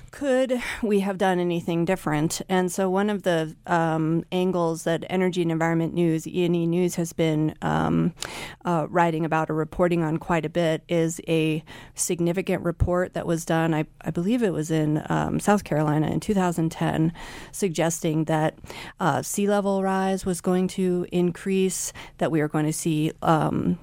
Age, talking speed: 30-49, 170 wpm